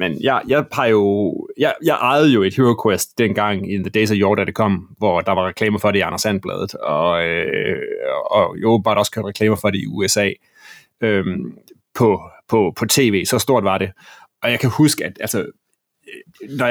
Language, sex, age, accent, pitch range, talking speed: Danish, male, 30-49, native, 110-135 Hz, 200 wpm